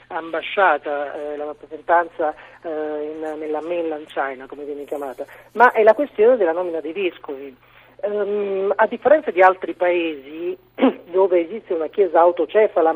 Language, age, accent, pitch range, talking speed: Italian, 40-59, native, 155-210 Hz, 145 wpm